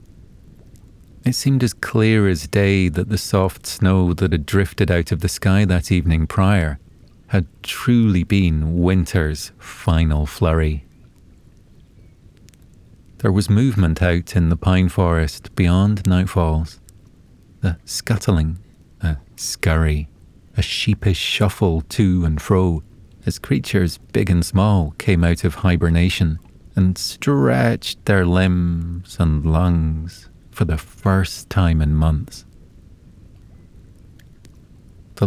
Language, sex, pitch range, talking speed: English, male, 85-100 Hz, 115 wpm